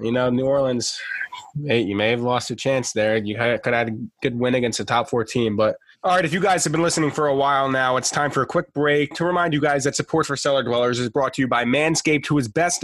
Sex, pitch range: male, 135-155 Hz